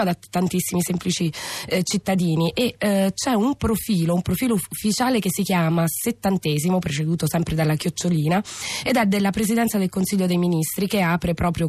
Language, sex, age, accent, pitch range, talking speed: Italian, female, 20-39, native, 170-205 Hz, 165 wpm